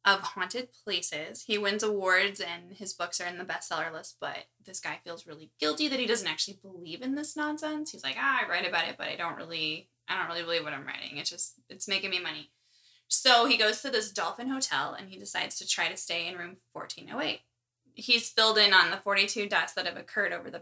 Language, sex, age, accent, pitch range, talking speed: English, female, 20-39, American, 175-215 Hz, 235 wpm